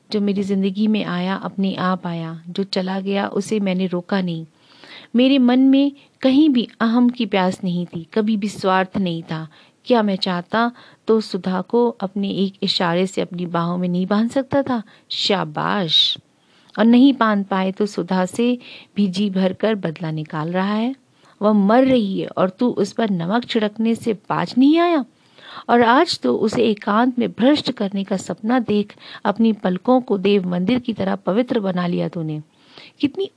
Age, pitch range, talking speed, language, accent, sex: 40-59, 180-230 Hz, 175 wpm, Hindi, native, female